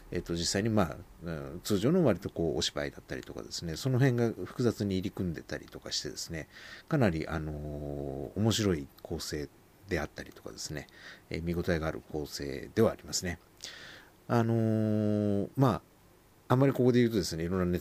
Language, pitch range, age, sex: Japanese, 80-110 Hz, 50-69, male